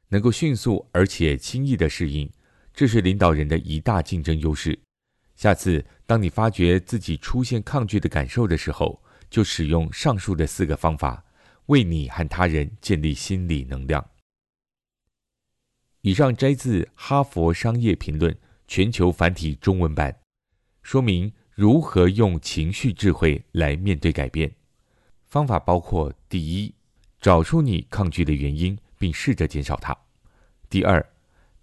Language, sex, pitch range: Chinese, male, 80-110 Hz